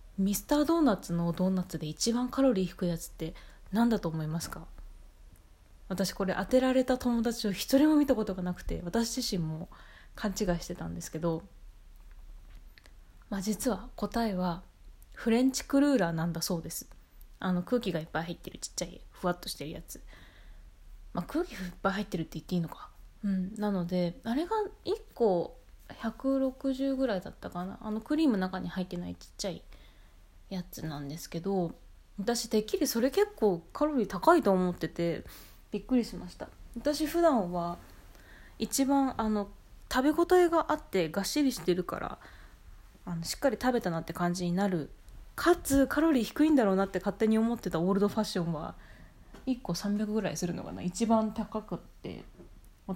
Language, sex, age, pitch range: Japanese, female, 20-39, 165-235 Hz